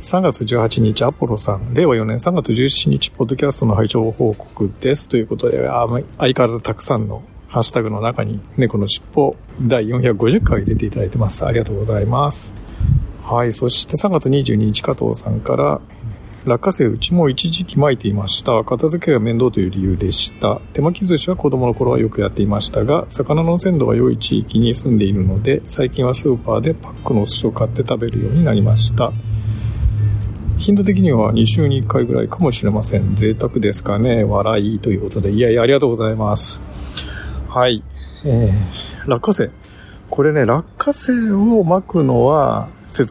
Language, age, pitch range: Japanese, 50-69, 105-130 Hz